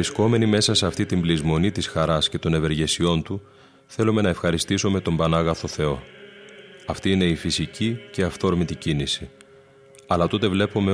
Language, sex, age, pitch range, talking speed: Greek, male, 30-49, 80-105 Hz, 155 wpm